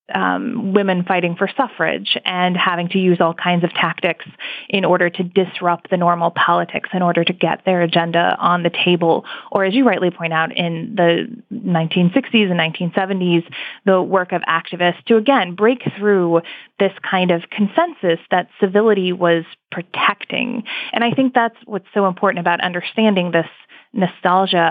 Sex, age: female, 20-39